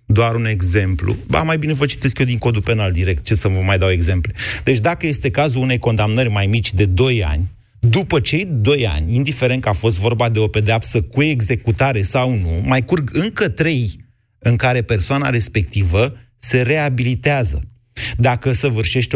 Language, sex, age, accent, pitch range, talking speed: Romanian, male, 30-49, native, 105-130 Hz, 180 wpm